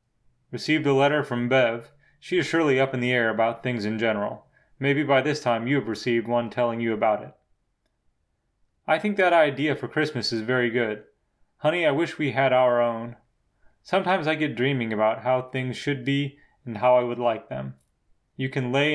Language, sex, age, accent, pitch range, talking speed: English, male, 30-49, American, 120-145 Hz, 195 wpm